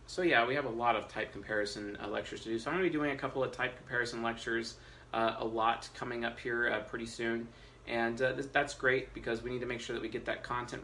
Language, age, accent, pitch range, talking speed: English, 30-49, American, 115-135 Hz, 270 wpm